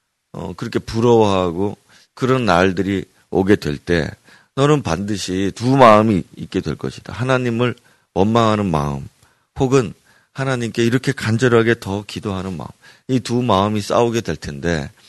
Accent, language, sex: native, Korean, male